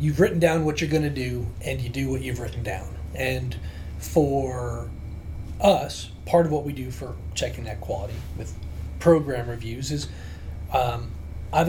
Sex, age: male, 30-49